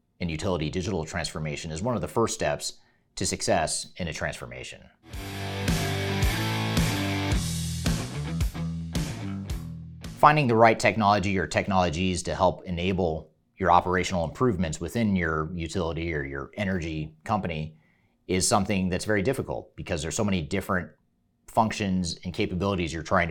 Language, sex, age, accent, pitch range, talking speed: English, male, 30-49, American, 80-100 Hz, 125 wpm